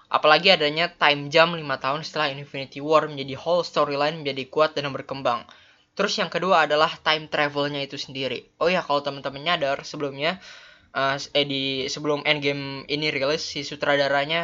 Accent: native